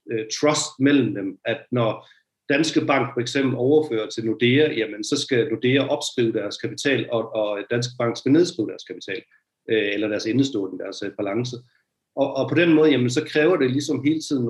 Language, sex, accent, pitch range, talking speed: Danish, male, native, 110-140 Hz, 180 wpm